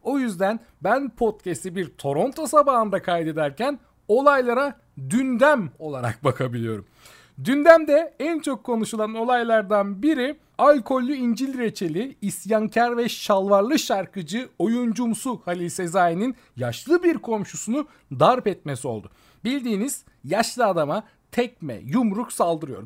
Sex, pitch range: male, 170-255 Hz